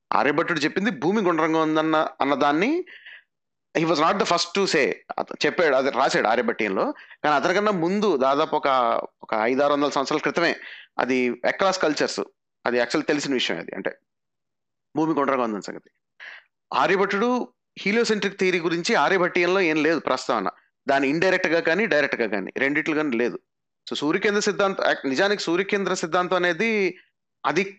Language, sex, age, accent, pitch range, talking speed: Telugu, male, 30-49, native, 140-195 Hz, 145 wpm